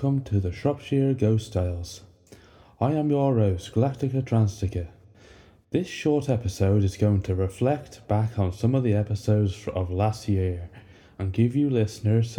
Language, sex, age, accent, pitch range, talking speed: English, male, 20-39, British, 95-120 Hz, 155 wpm